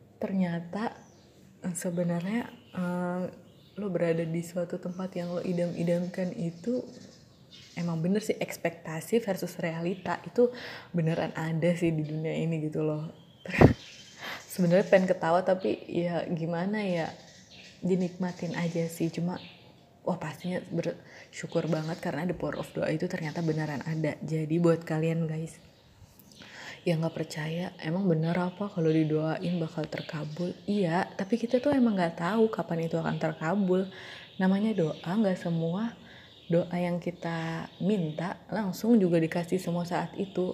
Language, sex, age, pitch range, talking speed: Indonesian, female, 20-39, 165-190 Hz, 135 wpm